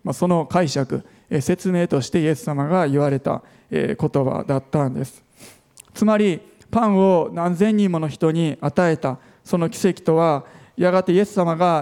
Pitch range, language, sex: 145-190 Hz, Japanese, male